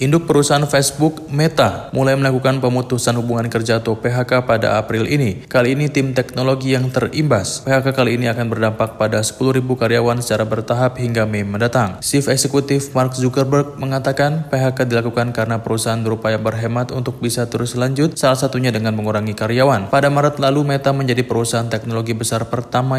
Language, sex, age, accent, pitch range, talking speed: Indonesian, male, 20-39, native, 115-135 Hz, 160 wpm